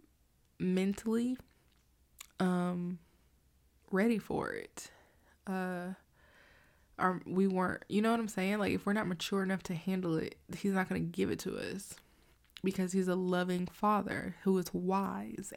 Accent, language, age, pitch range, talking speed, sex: American, English, 20-39, 175-200 Hz, 150 wpm, female